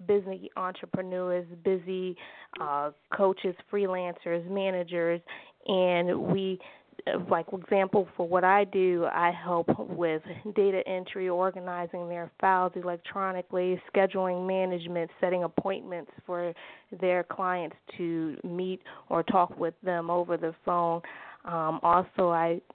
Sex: female